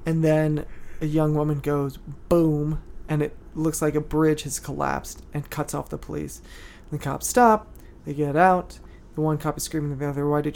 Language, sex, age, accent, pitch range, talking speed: English, male, 30-49, American, 145-160 Hz, 205 wpm